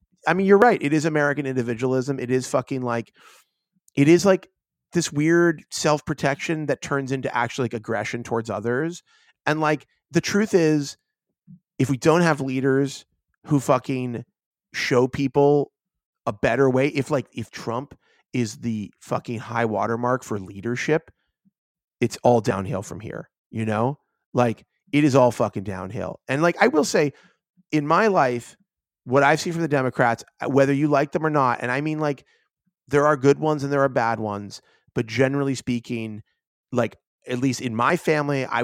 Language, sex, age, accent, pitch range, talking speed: English, male, 30-49, American, 115-145 Hz, 170 wpm